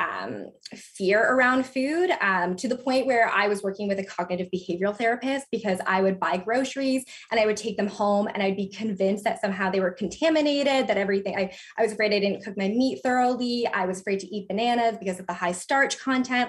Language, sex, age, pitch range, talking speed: English, female, 20-39, 190-240 Hz, 220 wpm